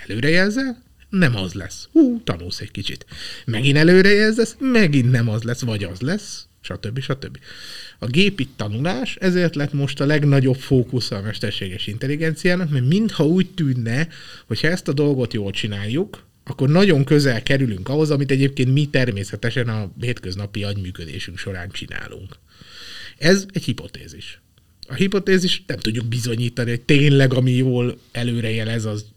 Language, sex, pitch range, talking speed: Hungarian, male, 110-160 Hz, 145 wpm